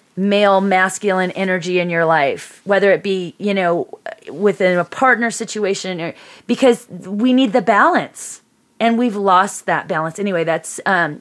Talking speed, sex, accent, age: 155 wpm, female, American, 30-49